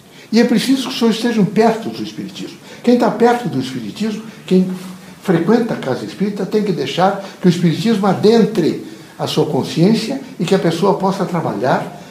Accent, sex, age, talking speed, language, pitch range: Brazilian, male, 60-79, 180 wpm, Portuguese, 165-220 Hz